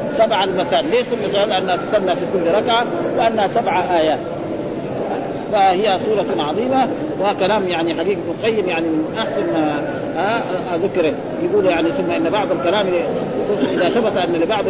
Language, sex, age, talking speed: Arabic, male, 40-59, 135 wpm